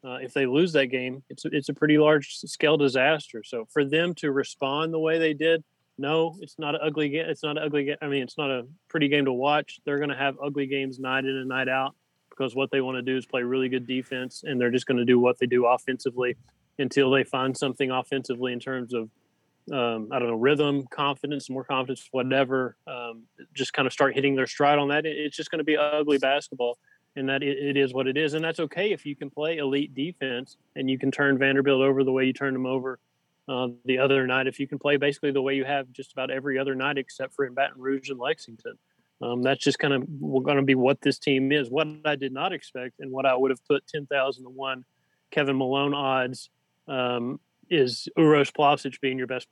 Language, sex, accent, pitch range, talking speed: English, male, American, 130-145 Hz, 240 wpm